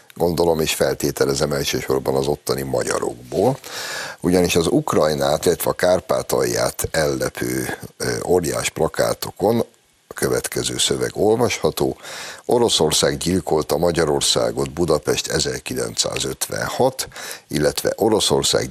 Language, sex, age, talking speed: Hungarian, male, 60-79, 85 wpm